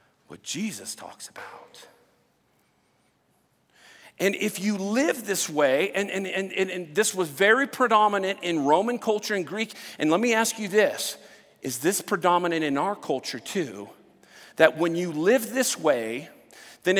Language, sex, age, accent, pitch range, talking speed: English, male, 40-59, American, 195-270 Hz, 150 wpm